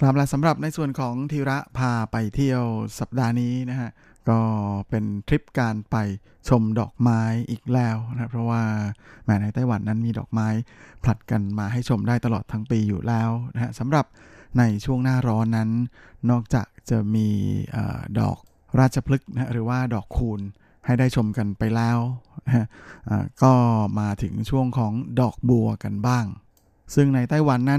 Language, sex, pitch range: Thai, male, 110-130 Hz